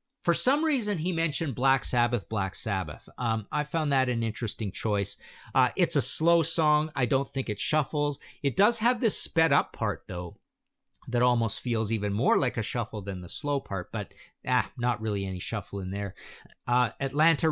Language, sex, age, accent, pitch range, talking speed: English, male, 50-69, American, 110-150 Hz, 190 wpm